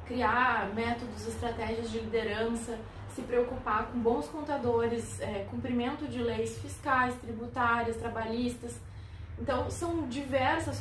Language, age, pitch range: Portuguese, 20-39, 215-280 Hz